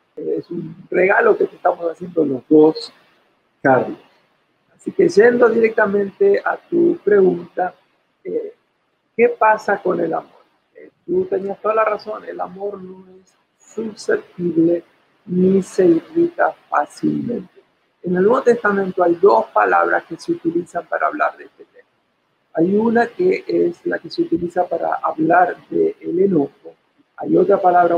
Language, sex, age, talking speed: Spanish, male, 60-79, 150 wpm